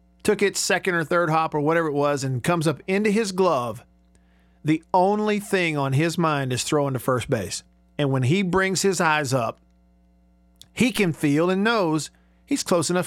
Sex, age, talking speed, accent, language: male, 50-69, 195 wpm, American, English